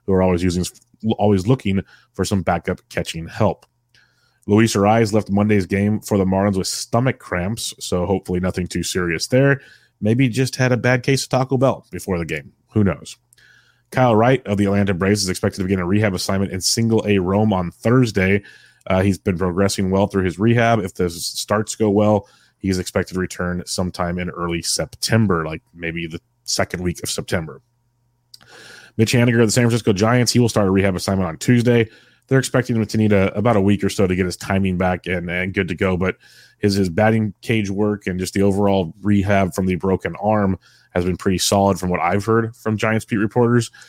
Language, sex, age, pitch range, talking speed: English, male, 30-49, 95-110 Hz, 205 wpm